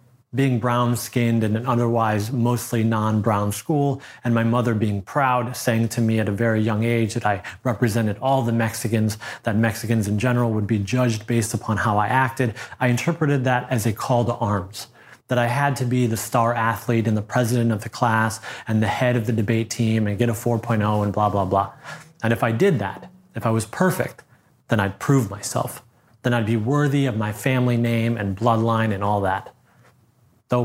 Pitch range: 115-125 Hz